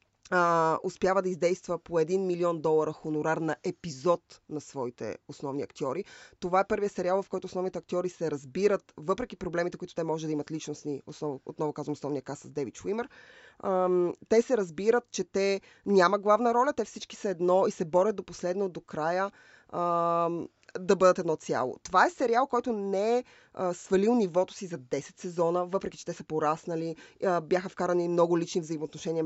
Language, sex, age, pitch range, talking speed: Bulgarian, female, 20-39, 160-205 Hz, 180 wpm